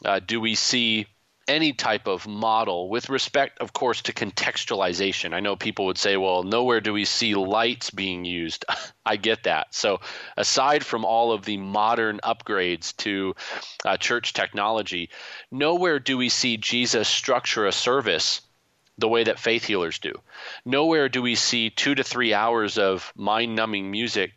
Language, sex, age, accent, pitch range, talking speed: English, male, 30-49, American, 105-125 Hz, 165 wpm